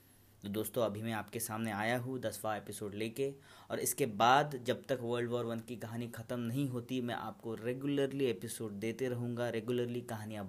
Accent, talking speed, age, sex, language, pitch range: native, 185 wpm, 30-49, male, Hindi, 105-135 Hz